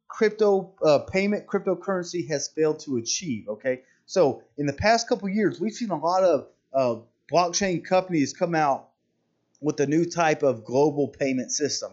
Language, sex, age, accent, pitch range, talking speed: English, male, 30-49, American, 130-180 Hz, 165 wpm